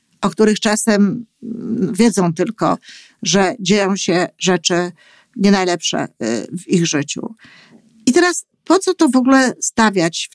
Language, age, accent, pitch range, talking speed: Polish, 50-69, native, 175-230 Hz, 135 wpm